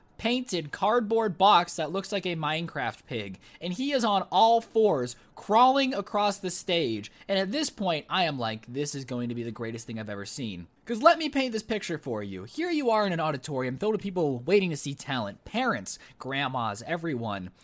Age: 20-39